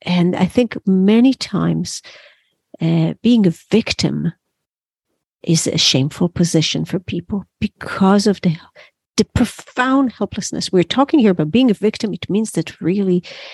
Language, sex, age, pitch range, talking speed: English, female, 50-69, 160-205 Hz, 140 wpm